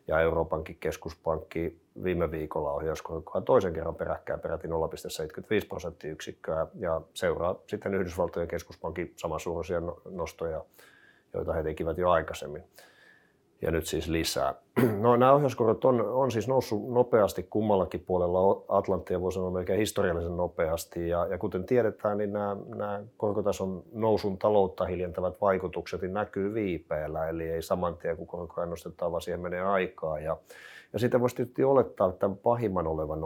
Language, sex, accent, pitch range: Finnish, male, native, 85-105 Hz